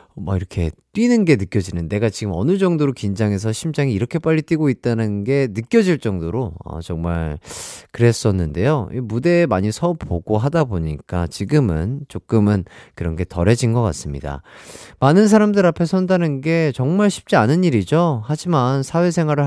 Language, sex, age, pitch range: Korean, male, 30-49, 105-170 Hz